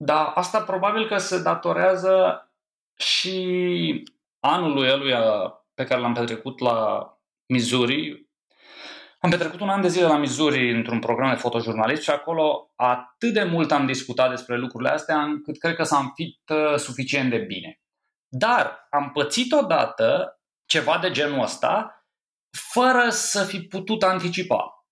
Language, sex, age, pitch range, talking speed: Romanian, male, 20-39, 145-220 Hz, 140 wpm